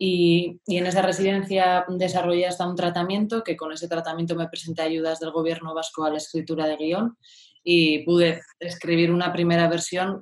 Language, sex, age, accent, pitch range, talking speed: Spanish, female, 20-39, Spanish, 155-175 Hz, 175 wpm